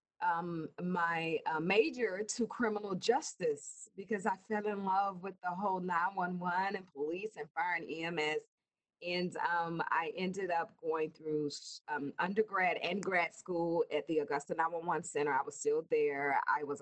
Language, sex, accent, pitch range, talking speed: English, female, American, 160-230 Hz, 160 wpm